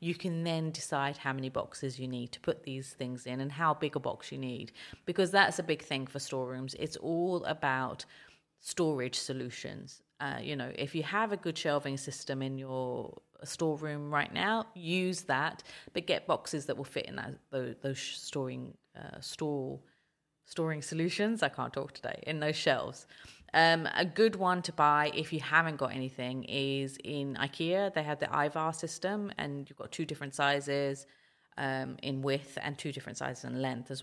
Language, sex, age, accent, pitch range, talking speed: English, female, 30-49, British, 135-155 Hz, 185 wpm